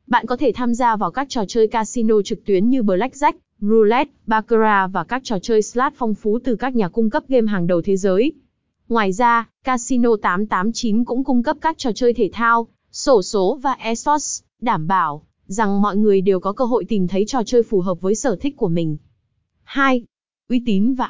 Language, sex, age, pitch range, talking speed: Vietnamese, female, 20-39, 195-245 Hz, 210 wpm